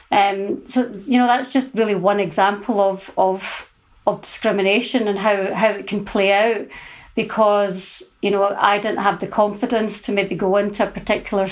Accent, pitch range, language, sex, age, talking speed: British, 200-225 Hz, English, female, 30-49, 175 wpm